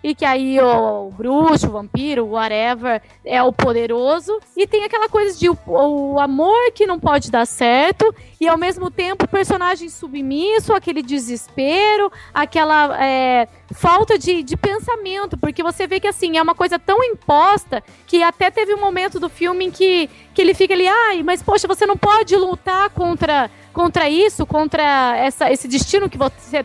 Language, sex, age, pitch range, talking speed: Portuguese, female, 20-39, 275-395 Hz, 180 wpm